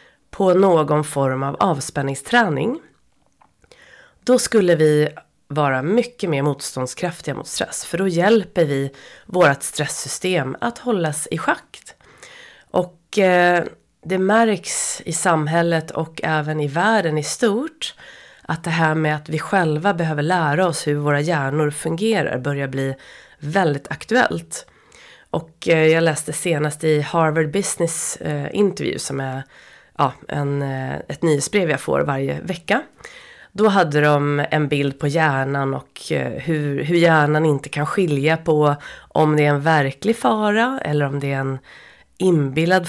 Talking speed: 135 wpm